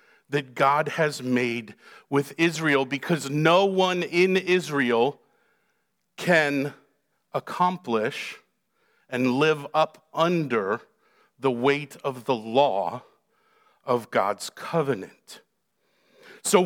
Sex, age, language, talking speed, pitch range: male, 50-69, English, 95 wpm, 160-220 Hz